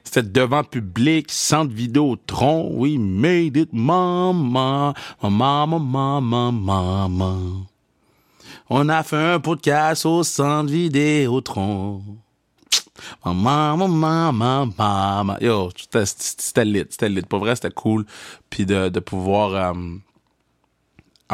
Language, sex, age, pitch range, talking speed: French, male, 30-49, 95-120 Hz, 115 wpm